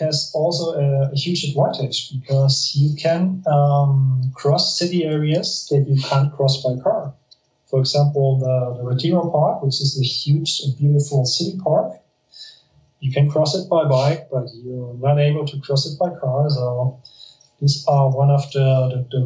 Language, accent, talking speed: English, German, 175 wpm